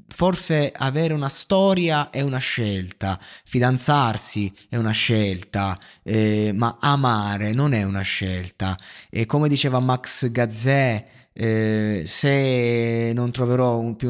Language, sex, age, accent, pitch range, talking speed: Italian, male, 20-39, native, 105-125 Hz, 125 wpm